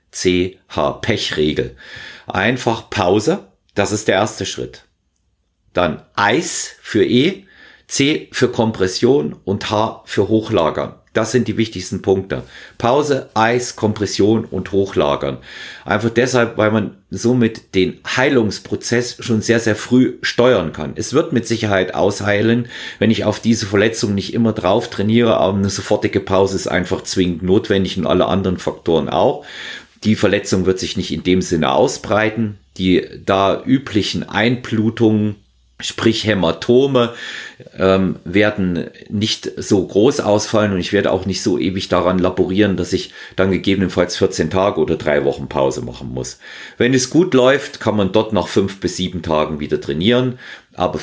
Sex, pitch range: male, 90-115 Hz